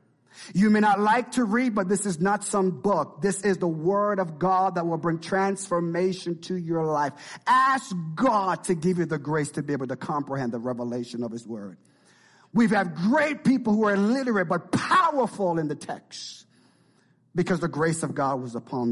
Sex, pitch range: male, 145-200 Hz